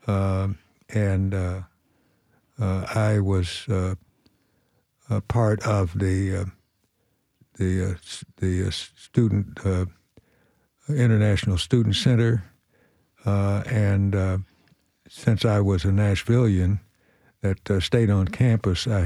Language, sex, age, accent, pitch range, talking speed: English, male, 60-79, American, 90-105 Hz, 110 wpm